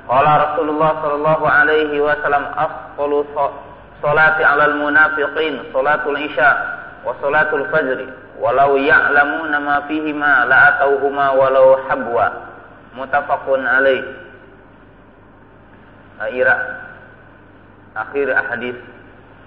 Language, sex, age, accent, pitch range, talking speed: Indonesian, male, 30-49, native, 125-175 Hz, 80 wpm